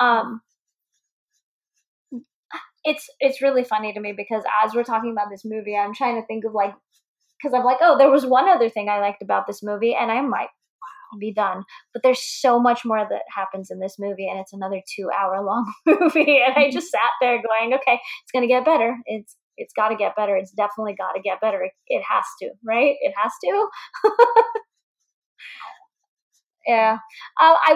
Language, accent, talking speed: English, American, 190 wpm